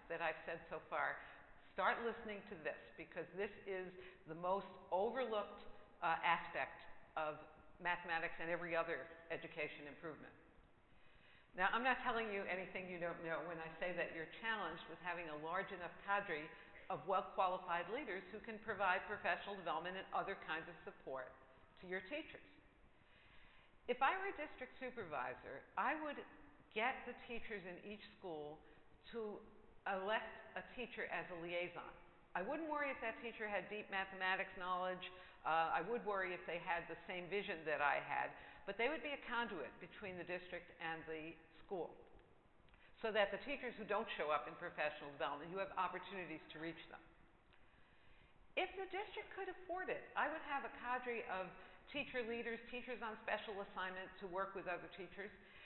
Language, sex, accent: English, female, American